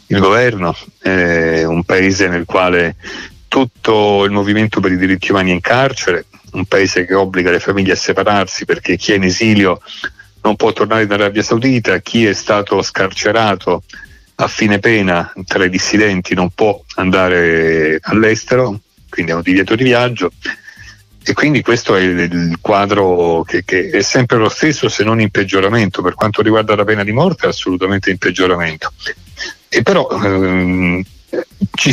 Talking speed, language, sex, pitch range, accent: 165 wpm, Italian, male, 90-110 Hz, native